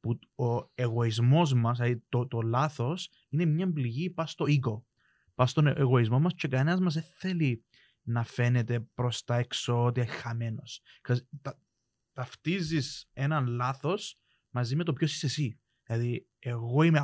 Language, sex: Greek, male